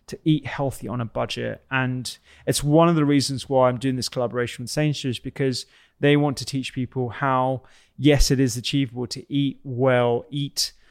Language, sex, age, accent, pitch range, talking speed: English, male, 20-39, British, 125-140 Hz, 185 wpm